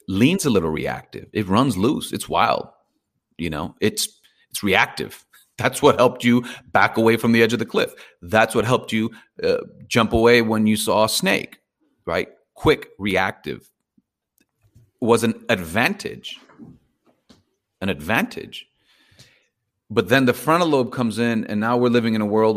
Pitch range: 95-115 Hz